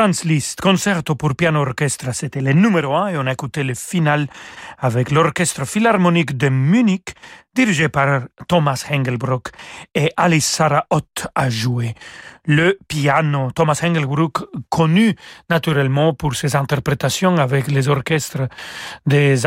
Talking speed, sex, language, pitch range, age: 130 wpm, male, French, 140-175 Hz, 40-59